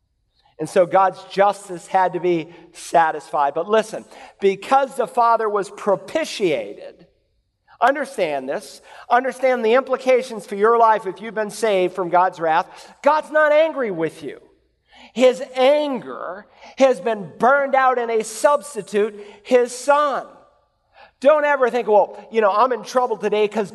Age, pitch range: 50-69, 200-265 Hz